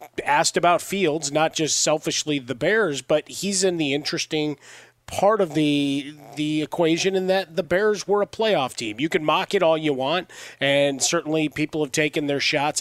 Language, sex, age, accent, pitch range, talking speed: English, male, 30-49, American, 150-185 Hz, 185 wpm